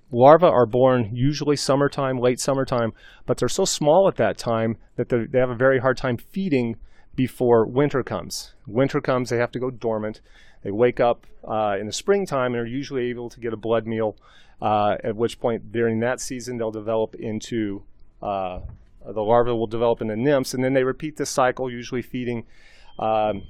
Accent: American